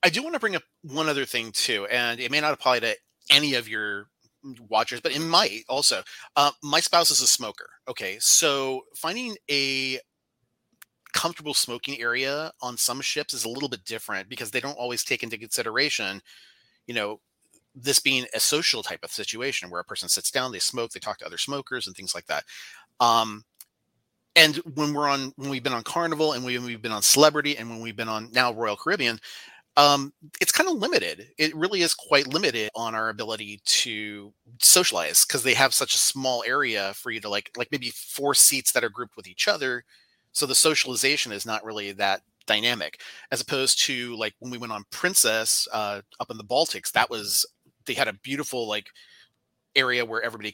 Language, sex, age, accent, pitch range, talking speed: English, male, 30-49, American, 115-145 Hz, 200 wpm